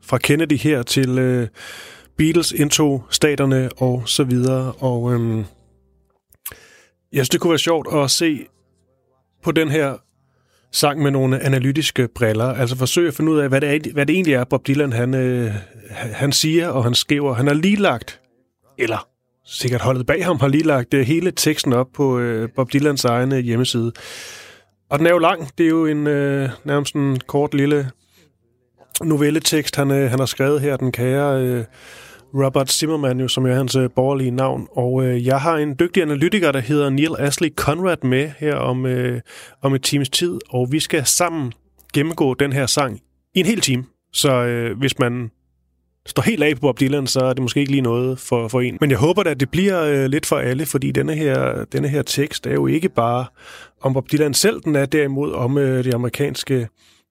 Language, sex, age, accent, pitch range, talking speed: Danish, male, 30-49, native, 125-150 Hz, 200 wpm